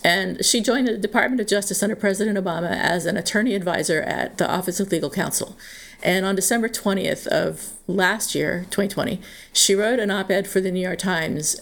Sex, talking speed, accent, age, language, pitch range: female, 190 wpm, American, 50-69, English, 180-220 Hz